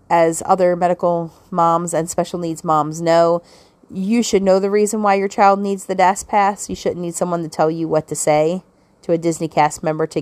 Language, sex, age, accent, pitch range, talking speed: English, female, 30-49, American, 160-190 Hz, 215 wpm